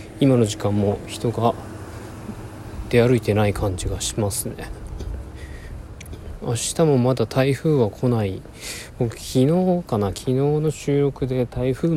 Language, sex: Japanese, male